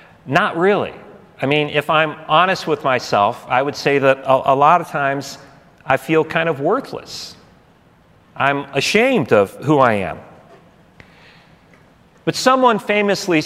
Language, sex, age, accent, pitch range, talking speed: English, male, 40-59, American, 140-195 Hz, 145 wpm